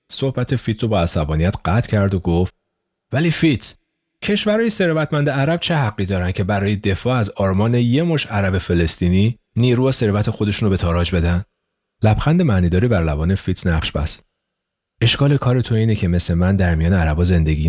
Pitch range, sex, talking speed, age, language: 90-135 Hz, male, 170 wpm, 40-59, Persian